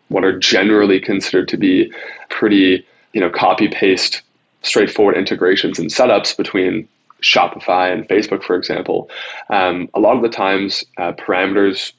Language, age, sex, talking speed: English, 20-39, male, 140 wpm